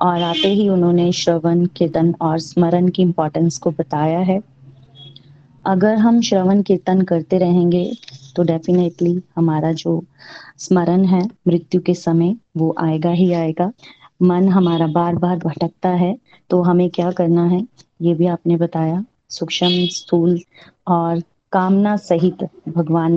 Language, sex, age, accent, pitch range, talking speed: Hindi, female, 30-49, native, 165-190 Hz, 140 wpm